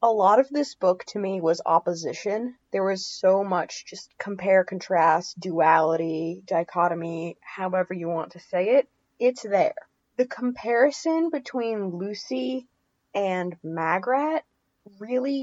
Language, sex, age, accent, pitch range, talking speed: English, female, 20-39, American, 185-245 Hz, 125 wpm